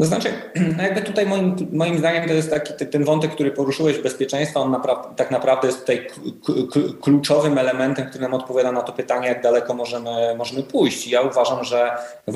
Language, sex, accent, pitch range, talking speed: Polish, male, native, 110-145 Hz, 190 wpm